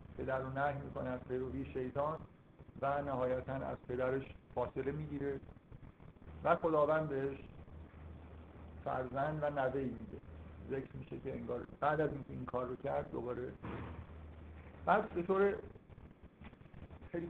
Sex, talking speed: male, 120 wpm